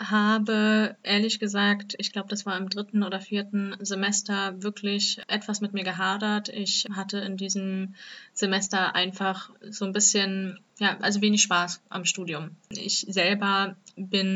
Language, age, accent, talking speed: German, 20-39, German, 145 wpm